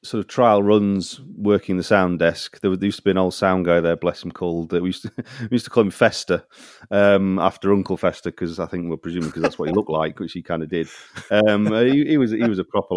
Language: English